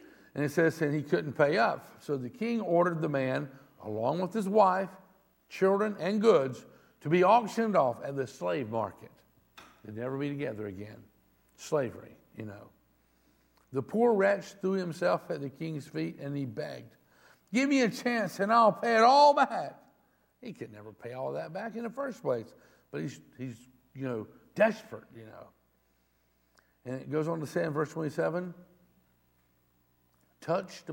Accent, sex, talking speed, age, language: American, male, 170 wpm, 60-79, English